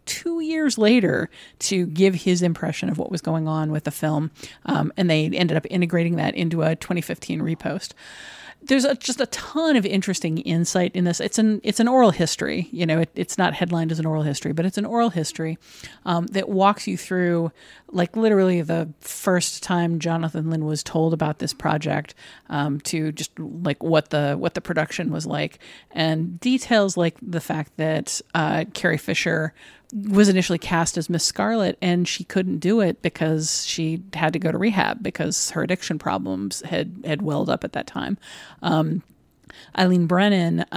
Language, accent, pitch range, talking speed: English, American, 160-200 Hz, 185 wpm